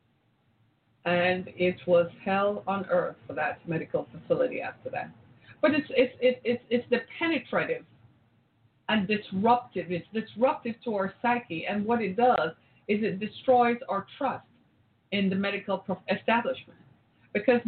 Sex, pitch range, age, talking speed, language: female, 180-240 Hz, 30-49, 145 wpm, English